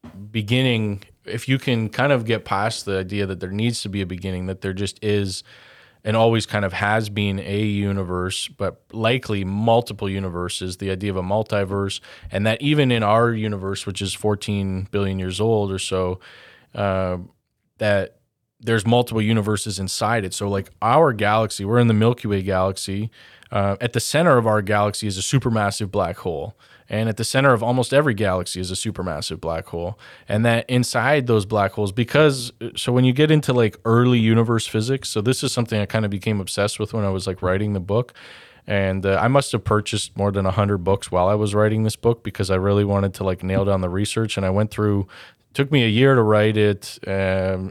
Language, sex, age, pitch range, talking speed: English, male, 20-39, 95-115 Hz, 210 wpm